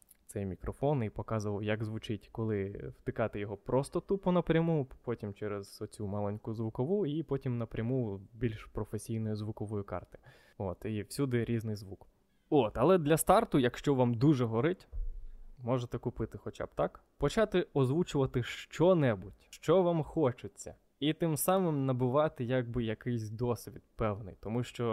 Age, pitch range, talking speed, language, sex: 20-39, 110-140 Hz, 140 wpm, Ukrainian, male